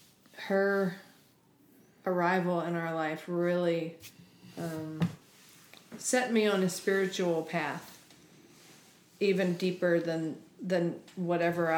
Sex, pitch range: female, 170-195 Hz